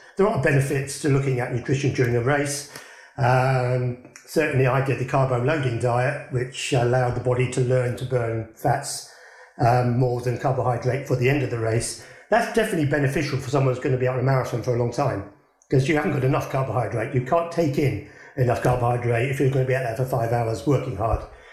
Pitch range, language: 125-150 Hz, English